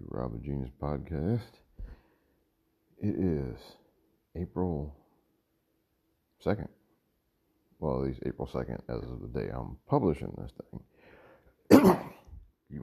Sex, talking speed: male, 105 wpm